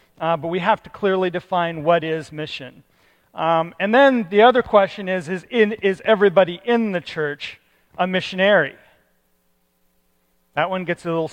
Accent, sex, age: American, male, 40-59